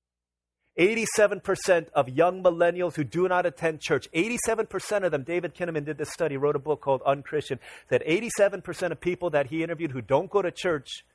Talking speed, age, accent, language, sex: 185 wpm, 30-49, American, English, male